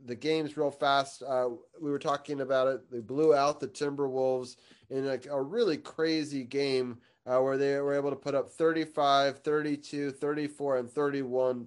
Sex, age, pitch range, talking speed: male, 30-49, 120-140 Hz, 175 wpm